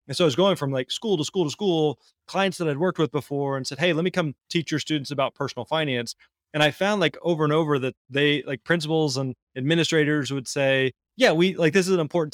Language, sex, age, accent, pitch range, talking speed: English, male, 20-39, American, 135-170 Hz, 255 wpm